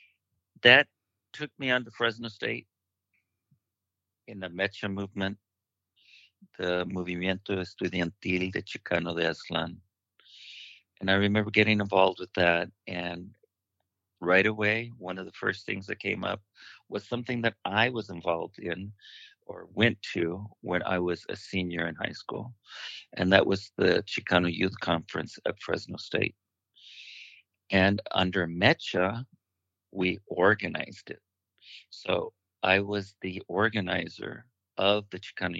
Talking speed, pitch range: 130 wpm, 90-105 Hz